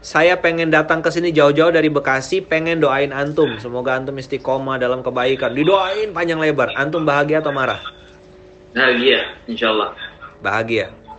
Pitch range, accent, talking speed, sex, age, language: 100-155 Hz, native, 145 wpm, male, 30-49, Indonesian